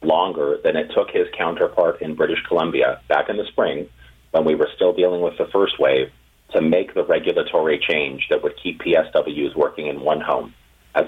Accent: American